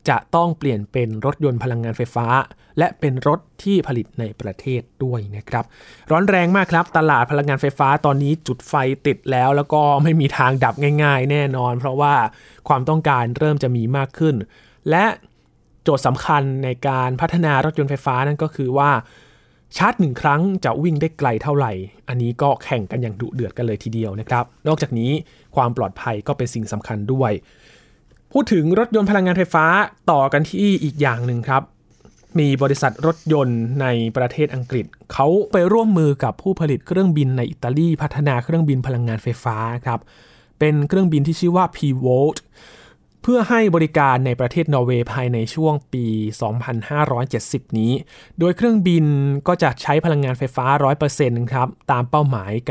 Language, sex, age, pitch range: Thai, male, 20-39, 120-155 Hz